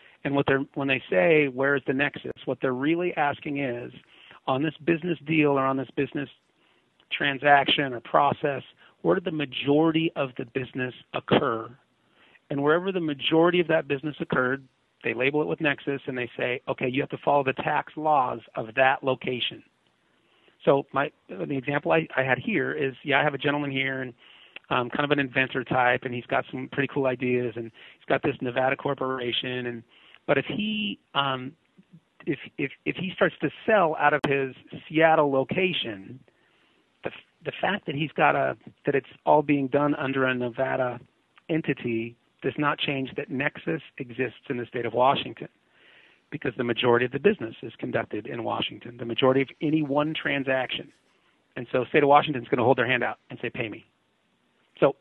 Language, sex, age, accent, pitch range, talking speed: English, male, 40-59, American, 130-150 Hz, 190 wpm